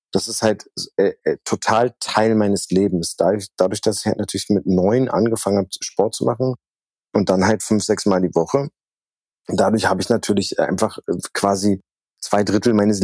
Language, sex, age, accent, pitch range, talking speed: German, male, 30-49, German, 95-115 Hz, 180 wpm